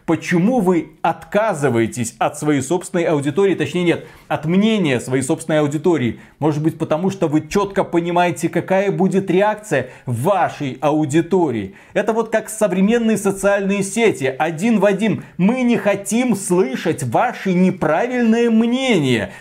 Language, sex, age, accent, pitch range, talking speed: Russian, male, 30-49, native, 150-200 Hz, 130 wpm